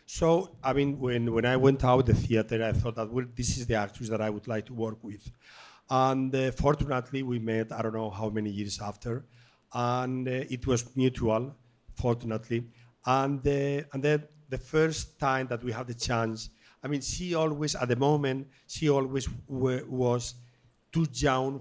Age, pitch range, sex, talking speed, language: 50-69, 115-140 Hz, male, 190 wpm, English